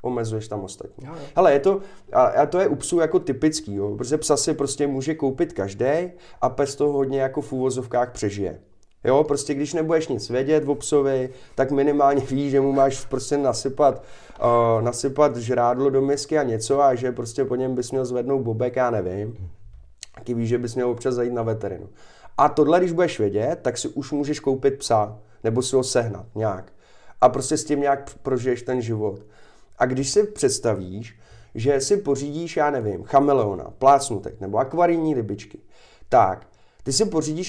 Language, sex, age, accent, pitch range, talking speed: Czech, male, 20-39, native, 115-145 Hz, 180 wpm